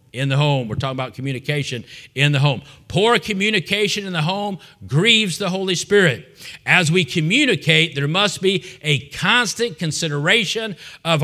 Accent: American